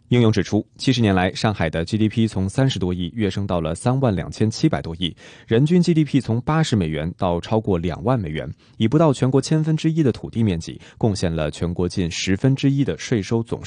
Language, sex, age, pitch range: Chinese, male, 20-39, 95-135 Hz